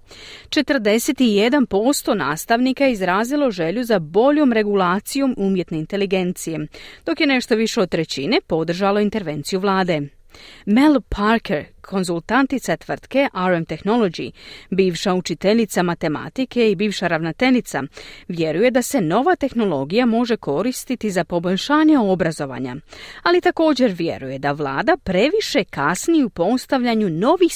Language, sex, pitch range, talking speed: Croatian, female, 170-255 Hz, 110 wpm